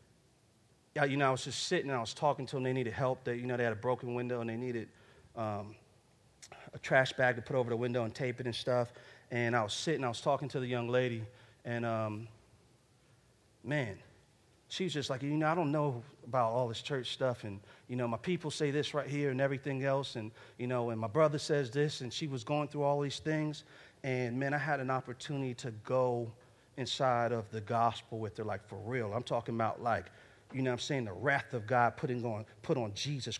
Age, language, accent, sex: 40-59, English, American, male